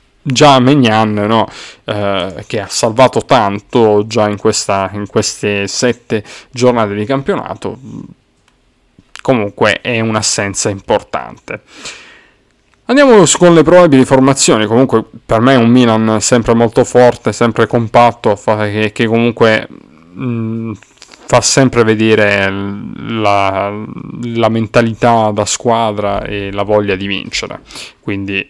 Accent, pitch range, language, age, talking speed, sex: native, 100-125 Hz, Italian, 20-39, 115 wpm, male